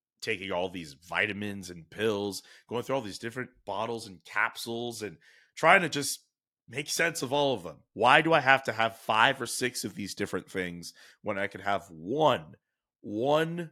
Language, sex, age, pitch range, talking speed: English, male, 30-49, 95-125 Hz, 190 wpm